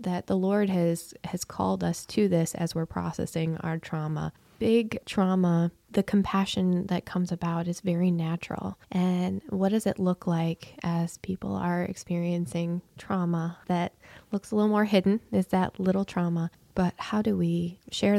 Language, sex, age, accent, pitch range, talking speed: English, female, 20-39, American, 170-195 Hz, 165 wpm